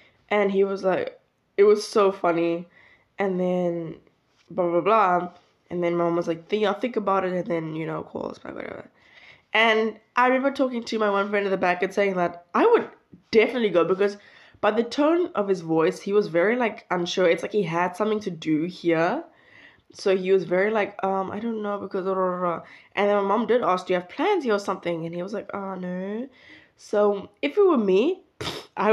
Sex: female